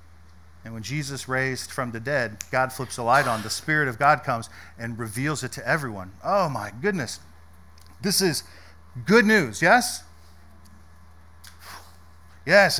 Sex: male